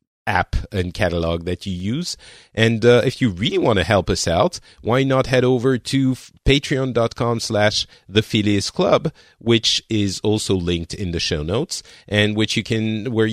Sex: male